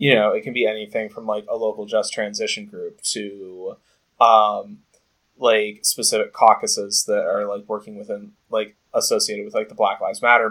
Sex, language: male, English